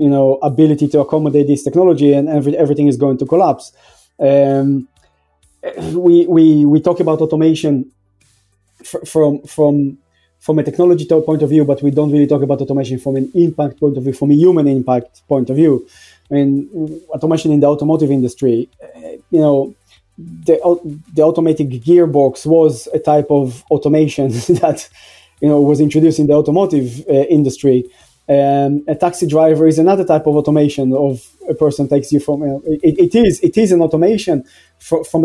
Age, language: 20-39, English